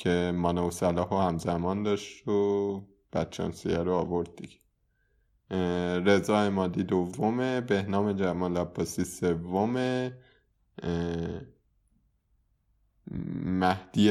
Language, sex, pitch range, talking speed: Persian, male, 85-100 Hz, 75 wpm